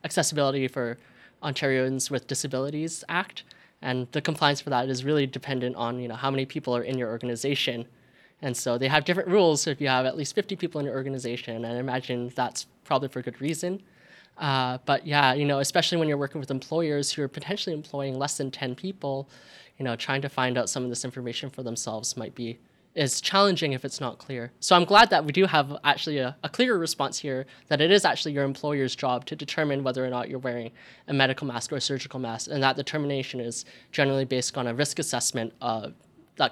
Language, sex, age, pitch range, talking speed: English, male, 10-29, 125-155 Hz, 220 wpm